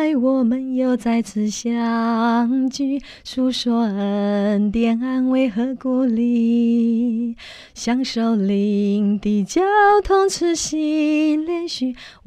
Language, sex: Chinese, female